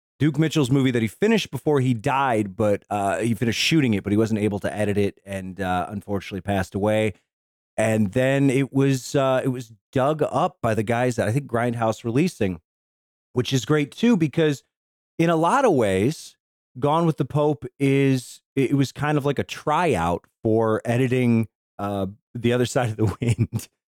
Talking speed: 190 wpm